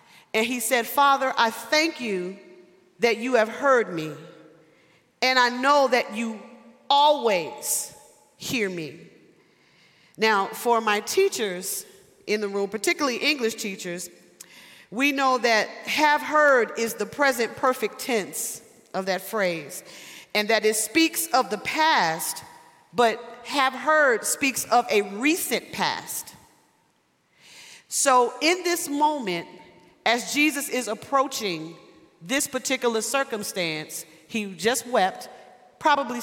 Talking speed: 120 wpm